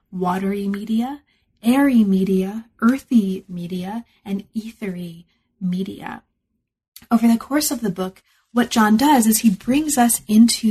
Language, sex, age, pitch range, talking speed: English, female, 30-49, 190-230 Hz, 130 wpm